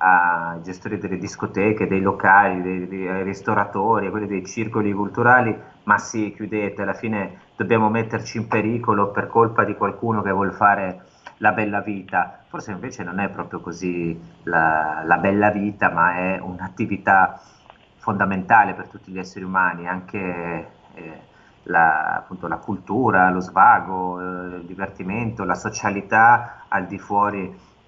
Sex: male